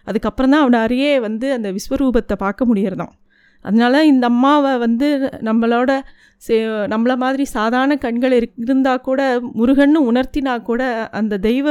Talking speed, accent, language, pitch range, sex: 135 wpm, native, Tamil, 215-260 Hz, female